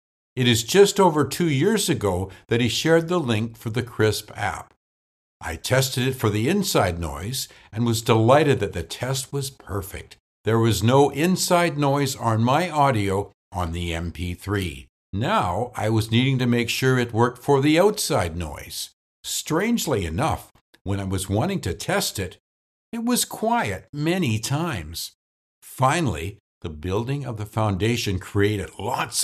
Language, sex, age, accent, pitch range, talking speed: English, male, 60-79, American, 95-140 Hz, 160 wpm